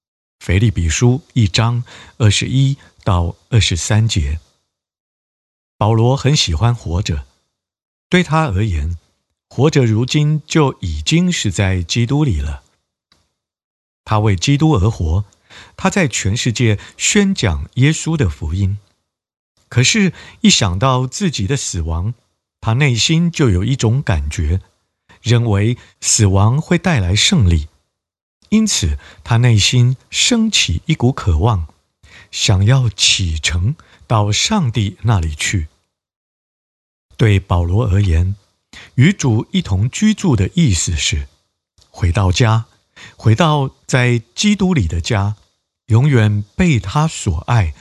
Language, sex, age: Chinese, male, 50-69